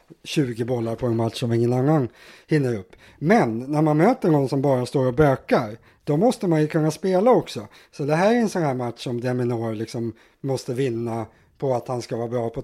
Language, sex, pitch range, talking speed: English, male, 120-155 Hz, 225 wpm